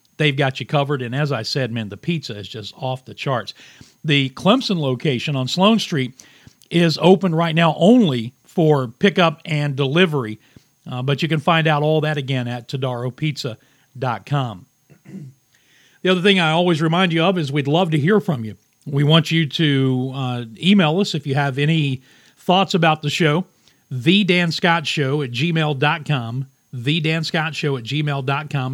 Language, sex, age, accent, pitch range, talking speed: English, male, 40-59, American, 130-165 Hz, 165 wpm